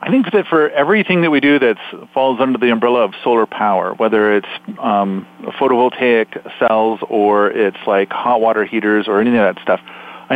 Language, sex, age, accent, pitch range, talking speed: English, male, 40-59, American, 115-150 Hz, 190 wpm